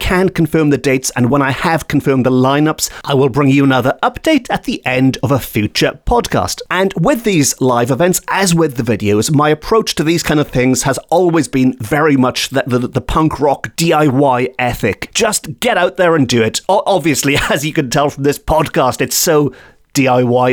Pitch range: 125-170 Hz